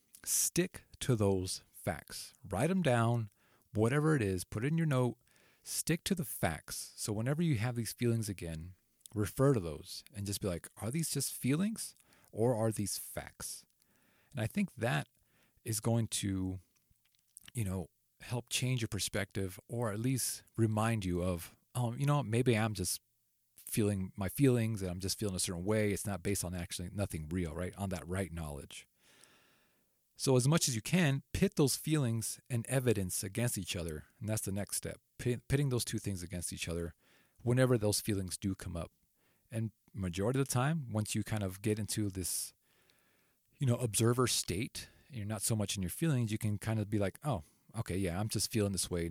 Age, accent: 30-49, American